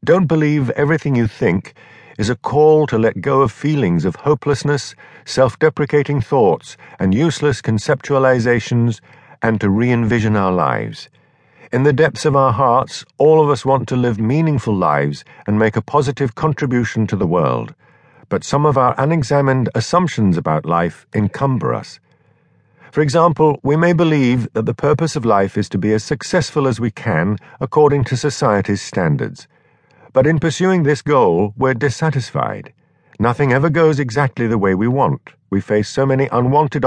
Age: 50-69